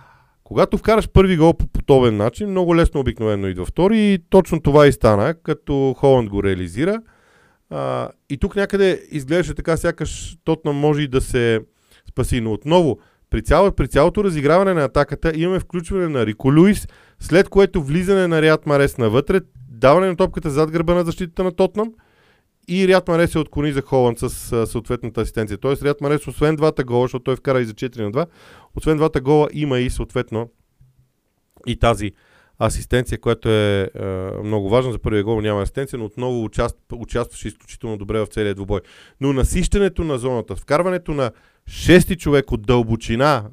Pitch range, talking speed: 115-165 Hz, 170 wpm